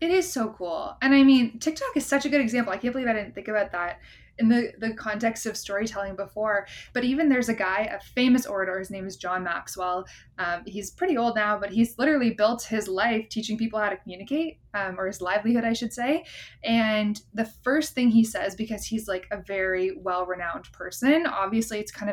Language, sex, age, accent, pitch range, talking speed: English, female, 20-39, American, 200-245 Hz, 215 wpm